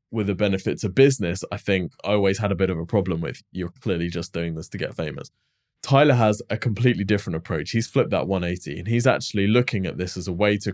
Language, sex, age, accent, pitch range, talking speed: English, male, 20-39, British, 95-120 Hz, 245 wpm